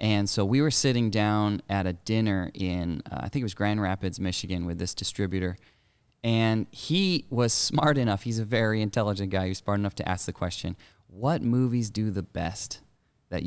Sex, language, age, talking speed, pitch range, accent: male, English, 20-39, 200 wpm, 95-115 Hz, American